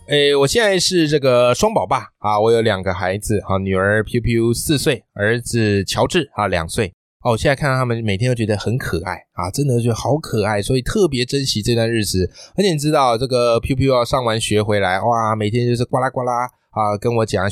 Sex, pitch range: male, 115-180 Hz